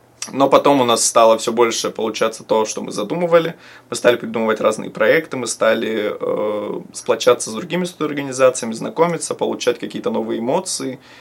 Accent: native